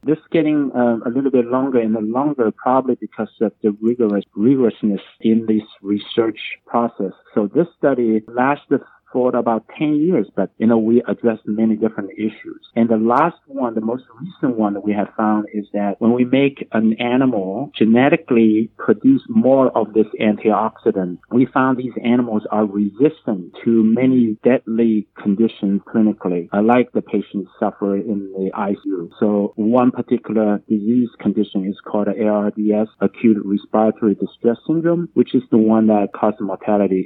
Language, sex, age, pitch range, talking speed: English, male, 50-69, 105-125 Hz, 160 wpm